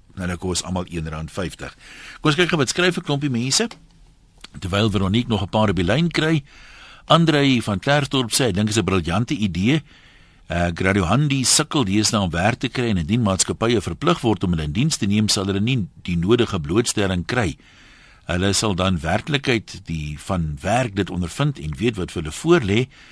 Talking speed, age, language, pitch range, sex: 190 wpm, 60-79, Dutch, 90-125 Hz, male